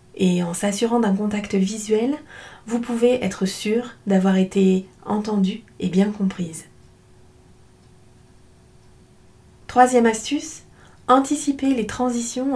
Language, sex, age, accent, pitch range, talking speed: French, female, 30-49, French, 195-250 Hz, 100 wpm